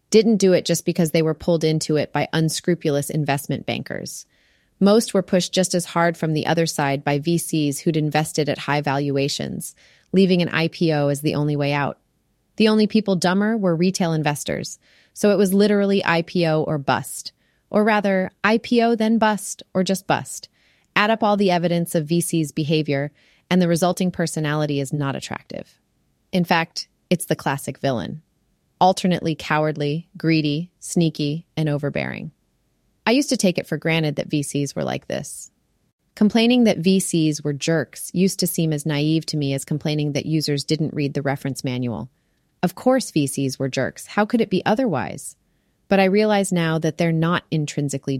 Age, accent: 30-49, American